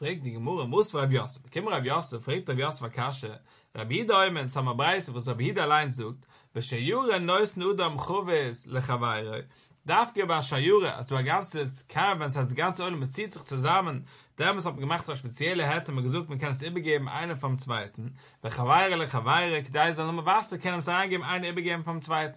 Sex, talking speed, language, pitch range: male, 60 wpm, English, 135-180 Hz